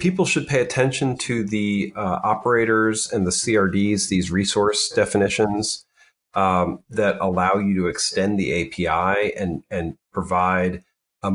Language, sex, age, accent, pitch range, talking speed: English, male, 40-59, American, 95-120 Hz, 135 wpm